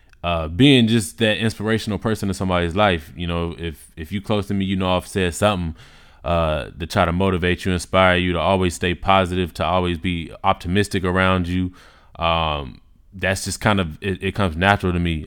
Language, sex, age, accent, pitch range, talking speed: English, male, 20-39, American, 85-100 Hz, 200 wpm